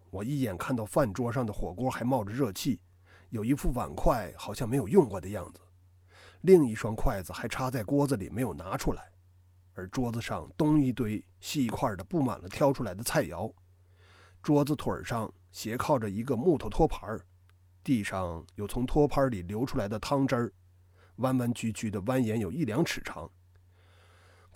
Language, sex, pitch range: Chinese, male, 90-130 Hz